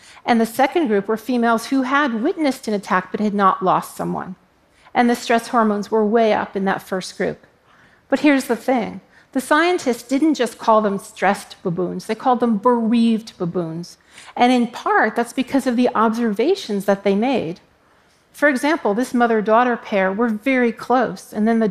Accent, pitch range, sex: American, 200-255 Hz, female